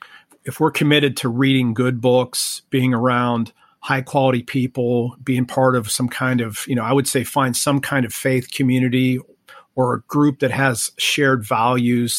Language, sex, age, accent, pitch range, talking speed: English, male, 40-59, American, 120-135 Hz, 175 wpm